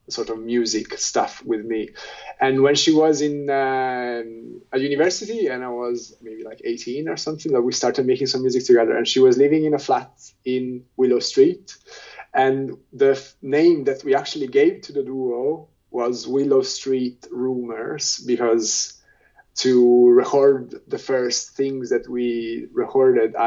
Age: 20-39